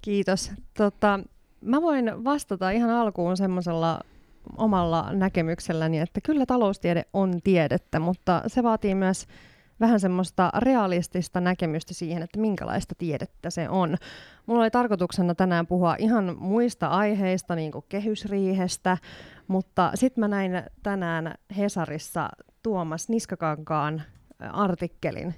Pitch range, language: 165-200 Hz, Finnish